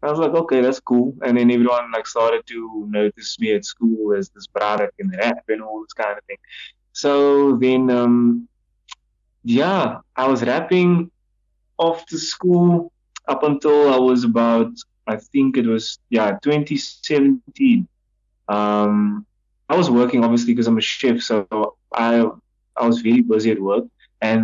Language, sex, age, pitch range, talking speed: English, male, 20-39, 110-135 Hz, 160 wpm